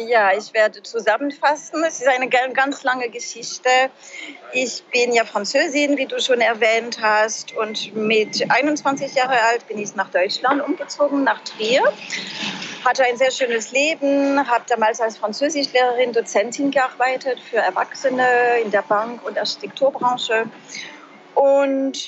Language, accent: German, German